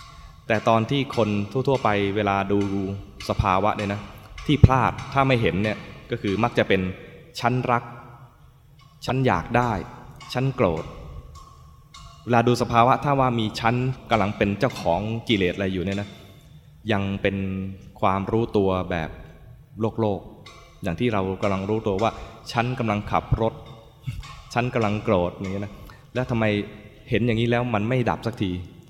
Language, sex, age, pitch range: English, male, 20-39, 100-120 Hz